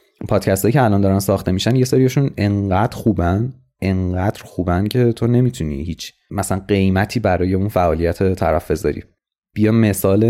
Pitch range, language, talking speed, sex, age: 90-120 Hz, Persian, 145 wpm, male, 30-49